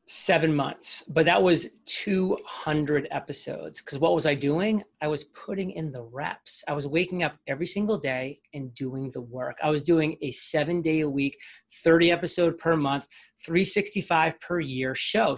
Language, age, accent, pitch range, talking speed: English, 30-49, American, 150-195 Hz, 175 wpm